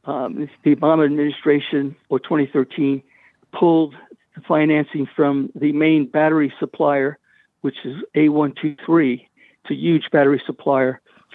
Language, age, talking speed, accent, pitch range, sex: English, 60-79, 115 wpm, American, 140-160 Hz, male